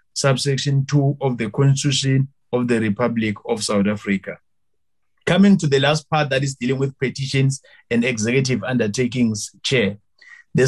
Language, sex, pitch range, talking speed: English, male, 125-145 Hz, 145 wpm